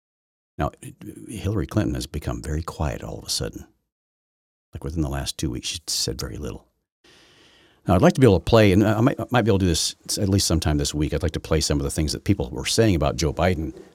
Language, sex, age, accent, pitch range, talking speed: English, male, 60-79, American, 75-100 Hz, 250 wpm